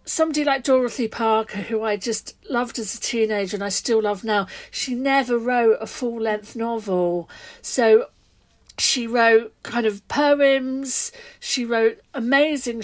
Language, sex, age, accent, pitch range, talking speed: English, female, 50-69, British, 205-255 Hz, 145 wpm